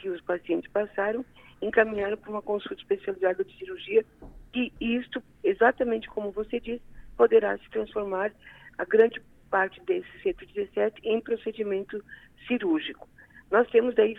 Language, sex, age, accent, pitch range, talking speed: Portuguese, female, 50-69, Brazilian, 200-310 Hz, 130 wpm